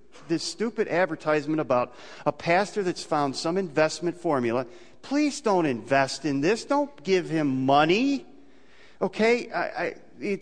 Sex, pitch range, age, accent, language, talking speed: male, 185-270 Hz, 40-59, American, English, 125 wpm